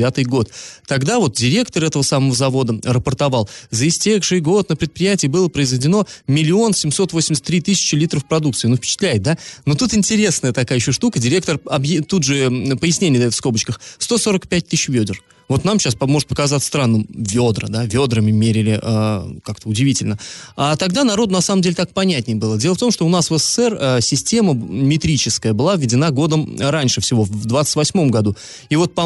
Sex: male